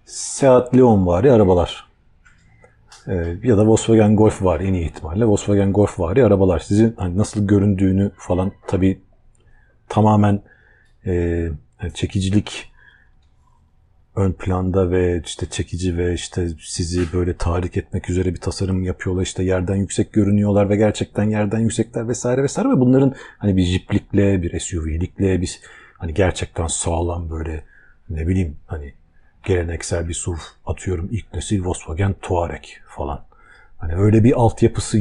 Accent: native